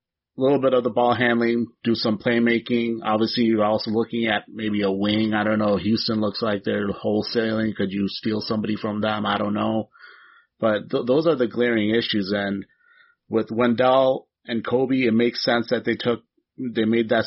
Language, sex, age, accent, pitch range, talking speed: English, male, 30-49, American, 100-115 Hz, 195 wpm